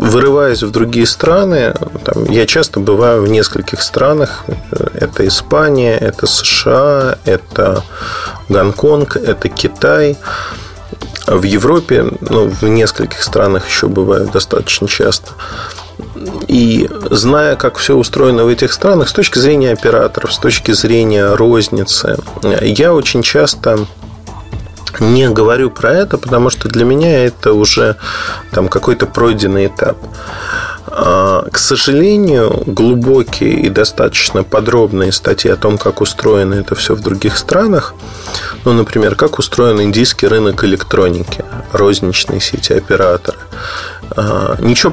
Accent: native